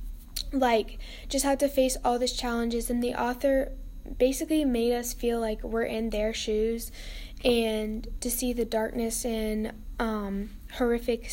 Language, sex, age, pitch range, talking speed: English, female, 10-29, 215-250 Hz, 150 wpm